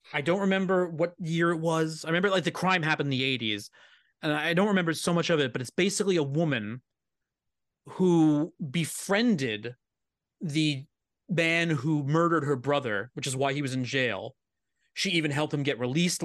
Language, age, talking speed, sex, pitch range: English, 30-49, 185 wpm, male, 140-175 Hz